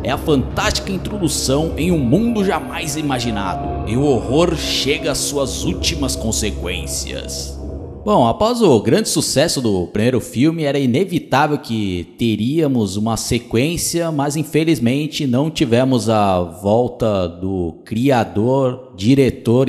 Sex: male